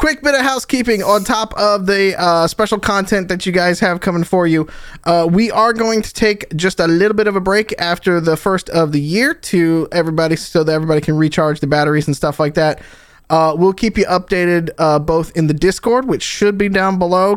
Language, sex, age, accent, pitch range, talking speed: English, male, 20-39, American, 155-195 Hz, 225 wpm